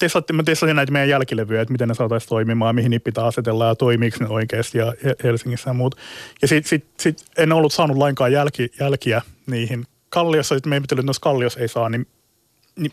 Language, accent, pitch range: Finnish, native, 120-155 Hz